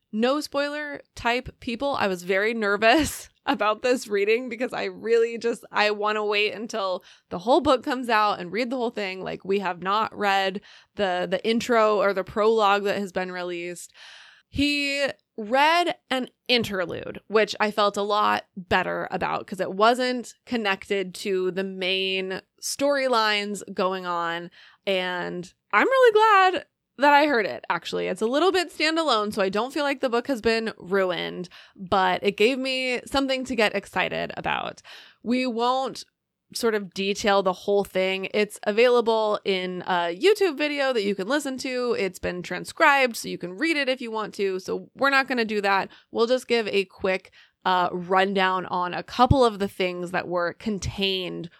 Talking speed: 180 wpm